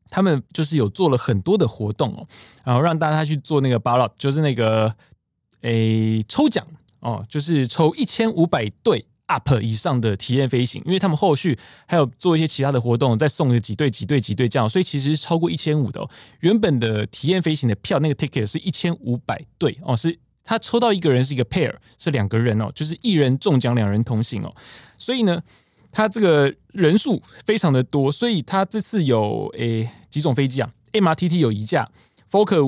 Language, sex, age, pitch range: Chinese, male, 20-39, 115-165 Hz